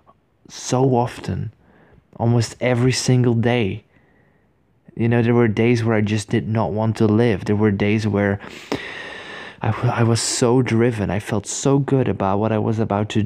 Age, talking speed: 20-39, 170 wpm